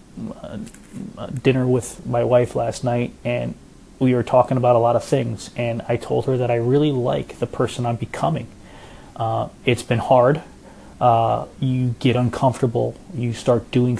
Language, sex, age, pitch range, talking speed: English, male, 30-49, 115-130 Hz, 165 wpm